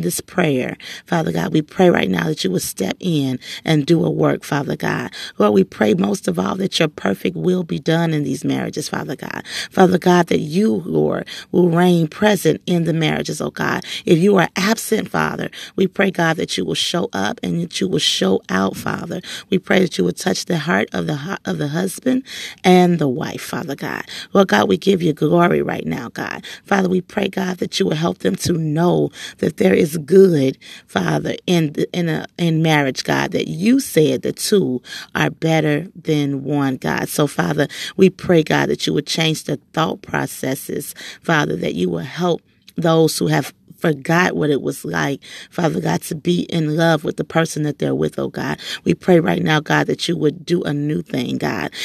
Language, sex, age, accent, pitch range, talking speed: English, female, 40-59, American, 145-180 Hz, 205 wpm